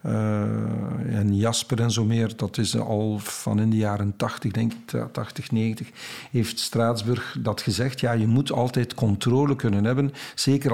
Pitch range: 110-130 Hz